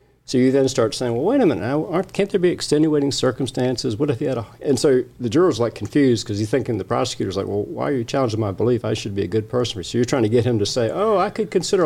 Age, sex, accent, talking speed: 50-69, male, American, 295 wpm